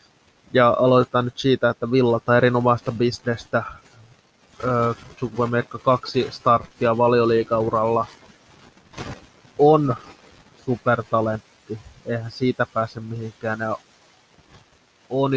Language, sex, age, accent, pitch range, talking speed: Finnish, male, 20-39, native, 115-125 Hz, 85 wpm